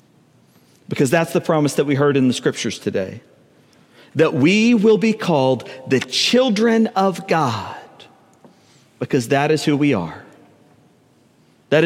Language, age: English, 40-59